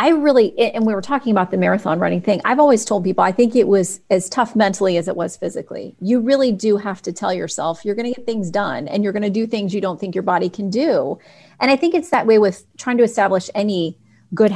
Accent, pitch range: American, 195-235 Hz